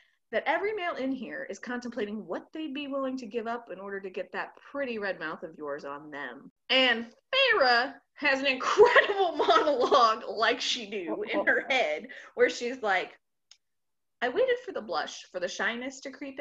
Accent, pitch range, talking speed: American, 215-290 Hz, 185 wpm